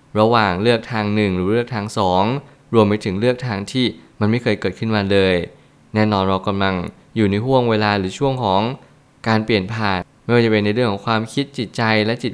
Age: 20-39